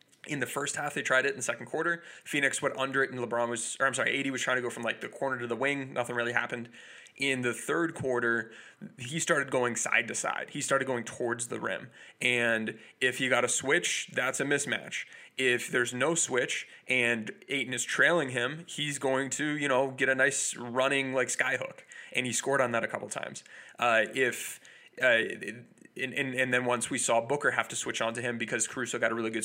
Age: 20-39